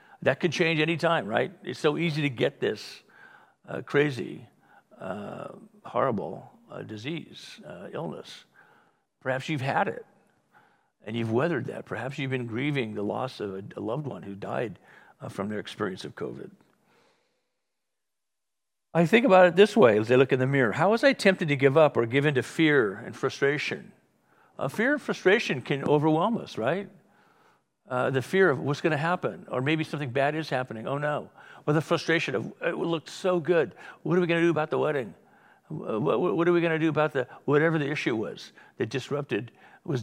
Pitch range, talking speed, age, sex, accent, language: 130-170 Hz, 195 wpm, 60-79, male, American, English